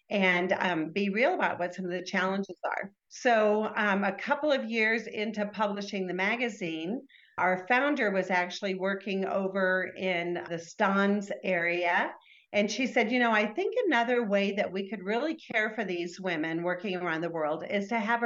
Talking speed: 180 wpm